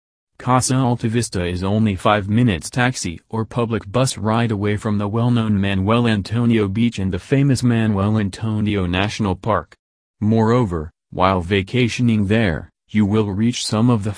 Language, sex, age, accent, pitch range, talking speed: English, male, 30-49, American, 95-115 Hz, 150 wpm